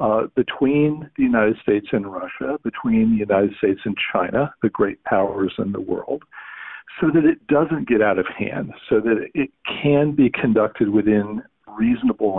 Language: English